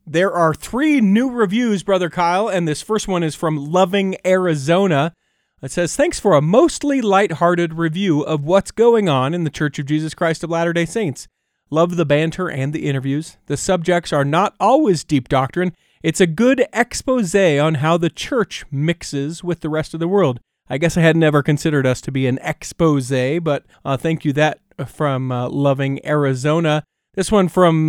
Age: 40-59